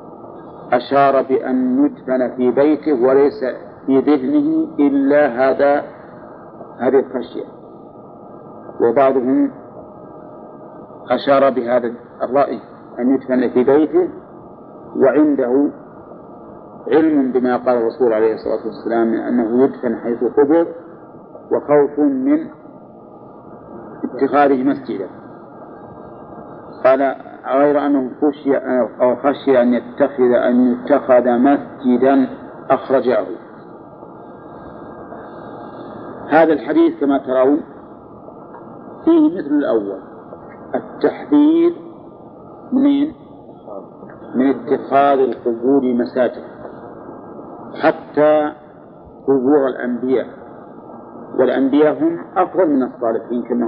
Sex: male